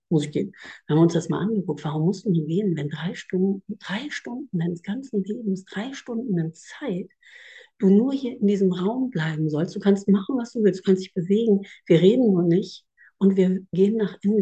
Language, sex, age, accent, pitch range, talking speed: German, female, 50-69, German, 180-230 Hz, 220 wpm